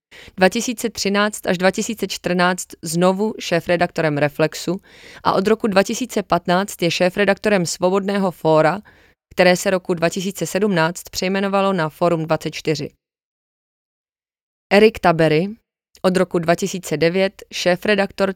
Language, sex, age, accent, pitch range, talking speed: Czech, female, 20-39, native, 170-200 Hz, 90 wpm